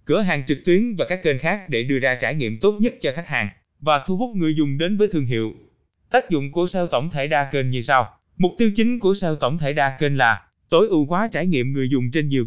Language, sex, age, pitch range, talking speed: Vietnamese, male, 20-39, 130-180 Hz, 270 wpm